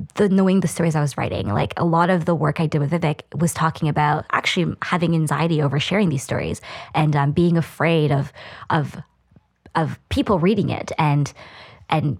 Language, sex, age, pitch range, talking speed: English, female, 20-39, 145-170 Hz, 190 wpm